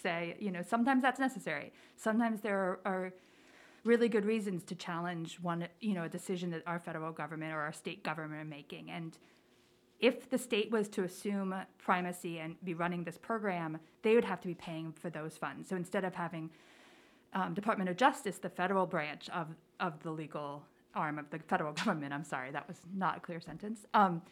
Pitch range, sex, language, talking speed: 165-210 Hz, female, English, 200 wpm